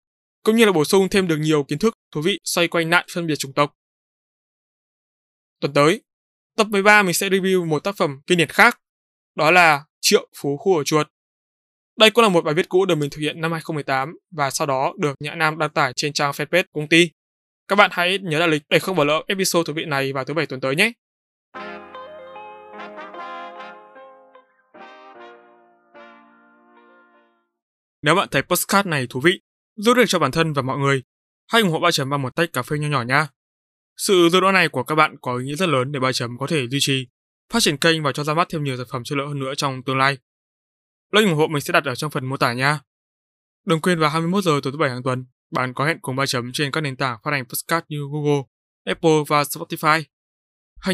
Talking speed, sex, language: 225 wpm, male, Vietnamese